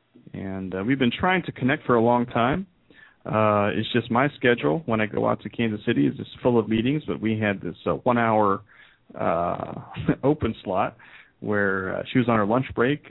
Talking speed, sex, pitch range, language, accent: 205 wpm, male, 100-120 Hz, English, American